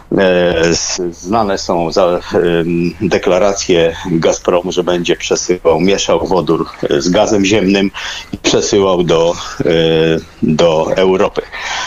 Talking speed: 90 wpm